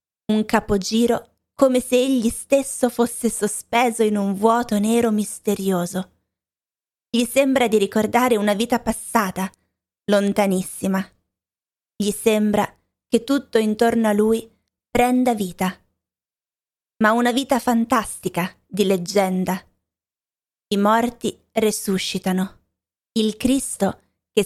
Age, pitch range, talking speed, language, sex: 20-39, 195-235 Hz, 105 wpm, Italian, female